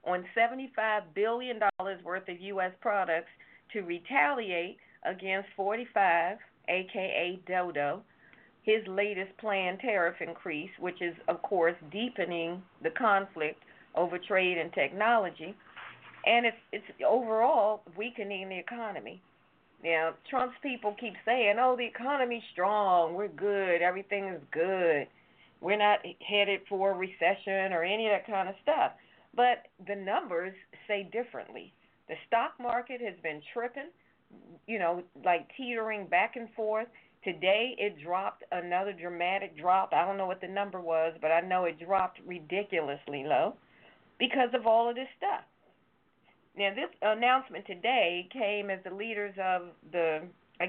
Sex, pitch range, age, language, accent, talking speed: female, 180-220 Hz, 40-59, English, American, 140 wpm